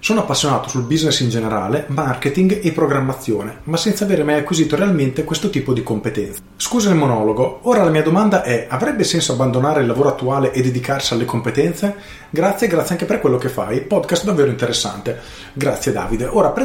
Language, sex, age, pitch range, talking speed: Italian, male, 30-49, 115-150 Hz, 185 wpm